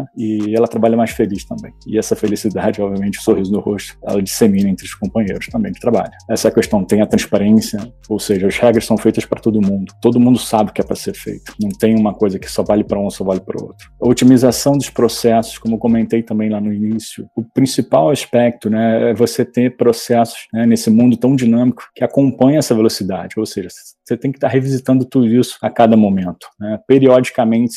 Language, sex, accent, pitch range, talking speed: Portuguese, male, Brazilian, 110-125 Hz, 215 wpm